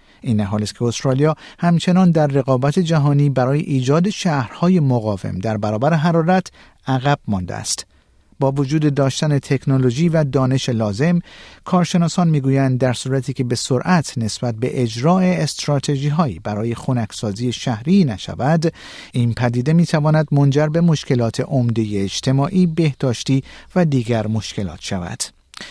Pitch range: 115-155 Hz